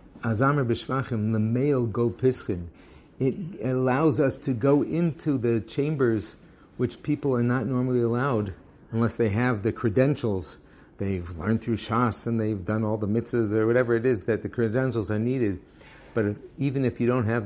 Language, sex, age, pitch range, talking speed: English, male, 50-69, 105-125 Hz, 170 wpm